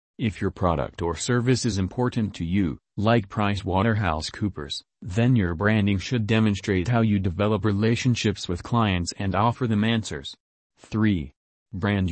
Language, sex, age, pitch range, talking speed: English, male, 40-59, 95-115 Hz, 150 wpm